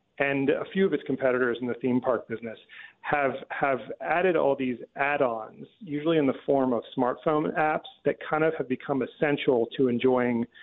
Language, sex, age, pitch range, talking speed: English, male, 40-59, 120-145 Hz, 180 wpm